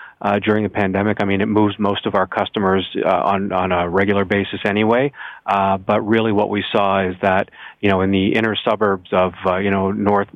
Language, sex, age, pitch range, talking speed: English, male, 40-59, 100-110 Hz, 220 wpm